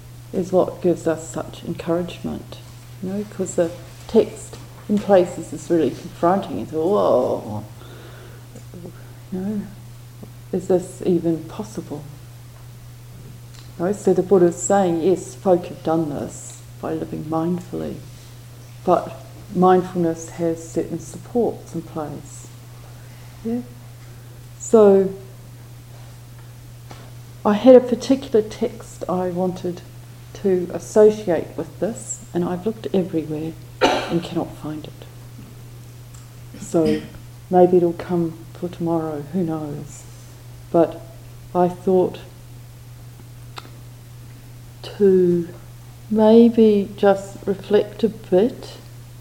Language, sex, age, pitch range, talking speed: English, female, 40-59, 120-185 Hz, 100 wpm